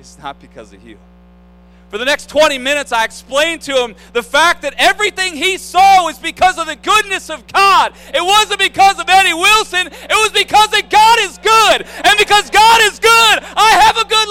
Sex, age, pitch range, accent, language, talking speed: male, 40-59, 255-390 Hz, American, English, 205 wpm